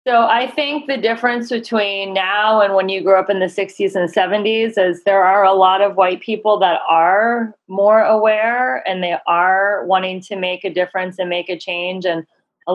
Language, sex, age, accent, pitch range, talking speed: English, female, 30-49, American, 180-215 Hz, 200 wpm